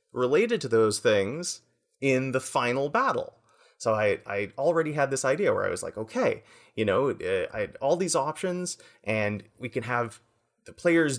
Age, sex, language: 30-49, male, English